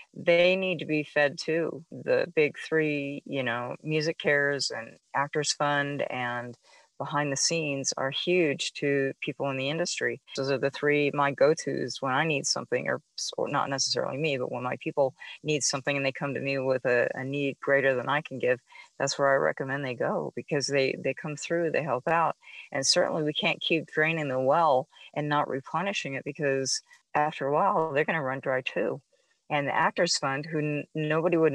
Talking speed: 200 wpm